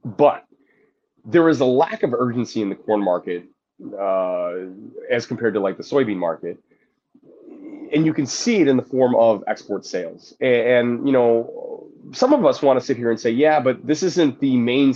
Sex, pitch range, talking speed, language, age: male, 110-150 Hz, 195 wpm, English, 30-49